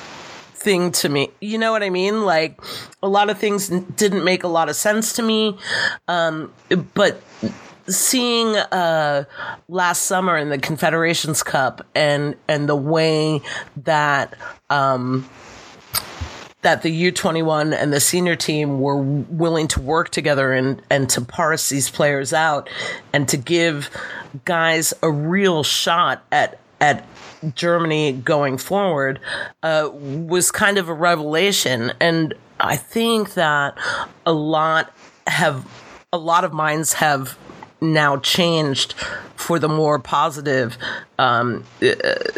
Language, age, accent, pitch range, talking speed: English, 40-59, American, 145-185 Hz, 130 wpm